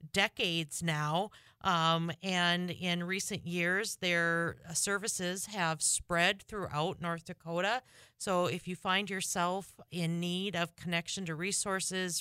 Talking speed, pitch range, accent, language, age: 125 wpm, 160-190 Hz, American, English, 40-59